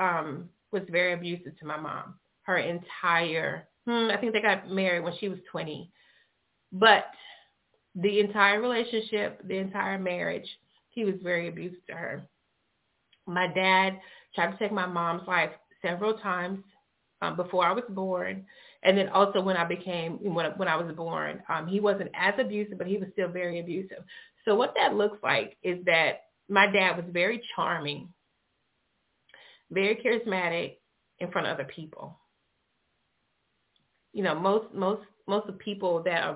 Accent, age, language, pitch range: American, 30-49, English, 175-205 Hz